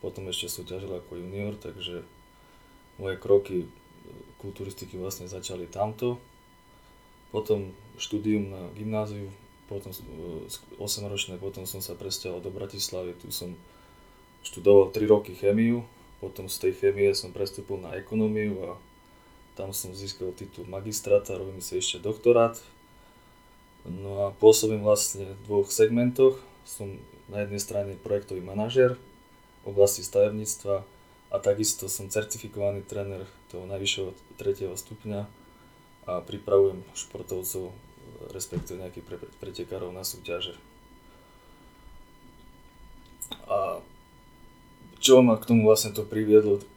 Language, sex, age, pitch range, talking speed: Slovak, male, 20-39, 95-110 Hz, 115 wpm